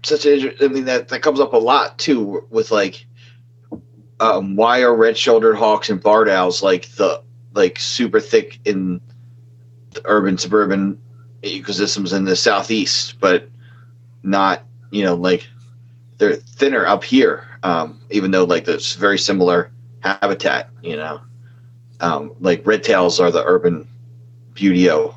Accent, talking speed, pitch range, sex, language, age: American, 145 wpm, 95-120 Hz, male, English, 30-49